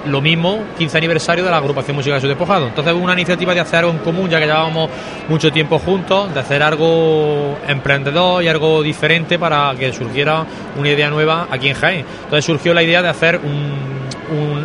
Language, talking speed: Spanish, 200 wpm